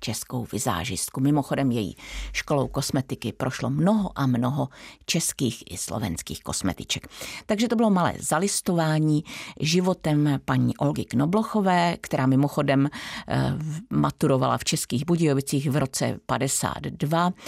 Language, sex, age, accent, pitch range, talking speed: Czech, female, 50-69, native, 135-195 Hz, 110 wpm